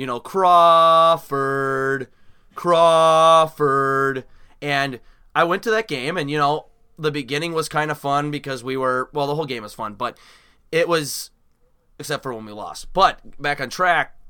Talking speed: 170 wpm